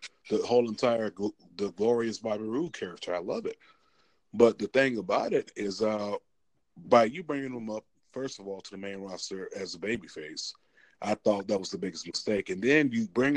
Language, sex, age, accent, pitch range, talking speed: English, male, 30-49, American, 100-125 Hz, 200 wpm